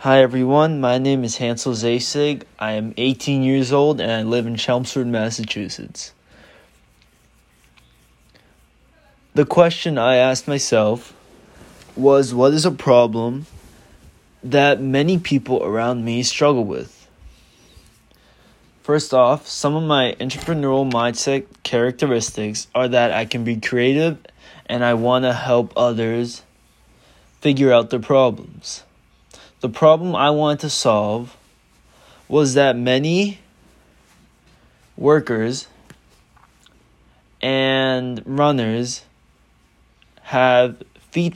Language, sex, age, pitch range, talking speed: English, male, 20-39, 115-135 Hz, 105 wpm